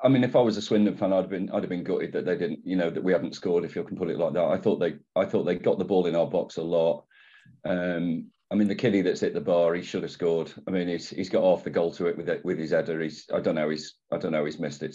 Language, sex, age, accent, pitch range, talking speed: English, male, 40-59, British, 85-100 Hz, 335 wpm